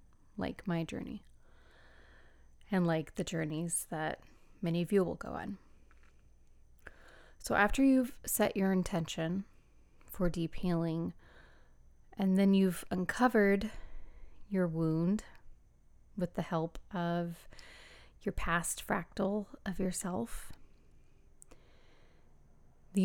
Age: 30-49